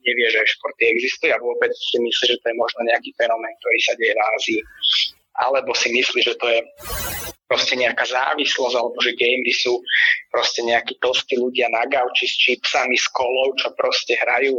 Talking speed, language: 185 wpm, Slovak